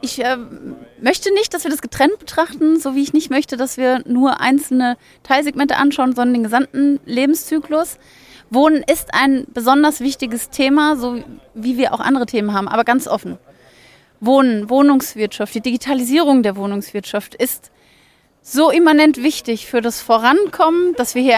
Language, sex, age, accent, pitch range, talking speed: German, female, 30-49, German, 230-285 Hz, 155 wpm